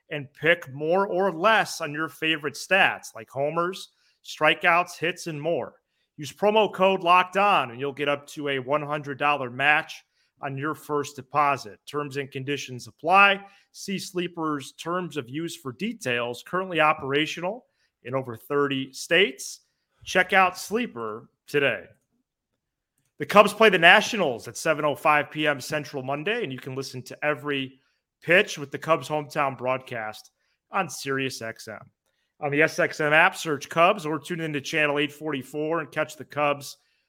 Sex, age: male, 30-49